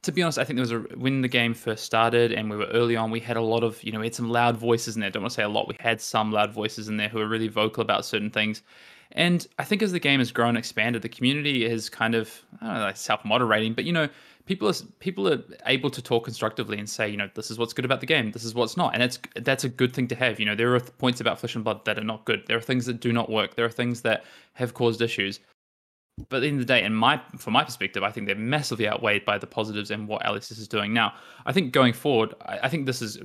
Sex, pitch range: male, 110-125 Hz